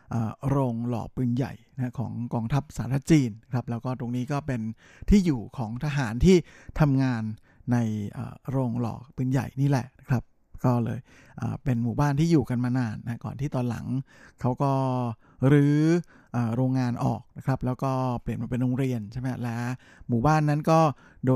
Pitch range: 120-145 Hz